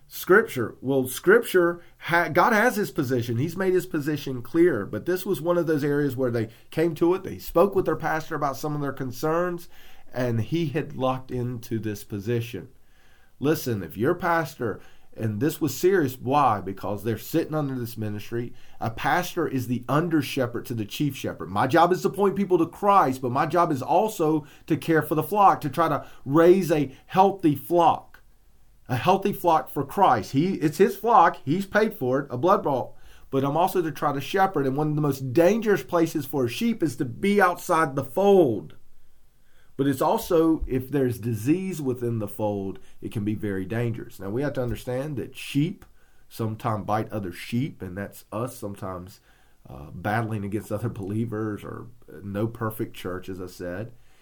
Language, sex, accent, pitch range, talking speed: English, male, American, 115-165 Hz, 190 wpm